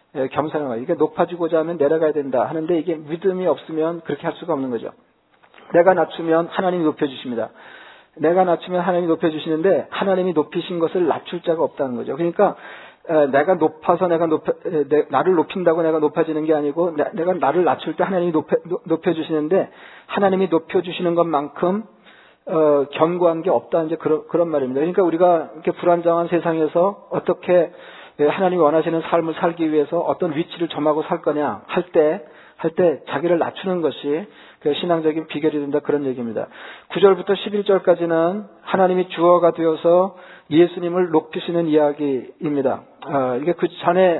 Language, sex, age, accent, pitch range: Korean, male, 40-59, native, 155-180 Hz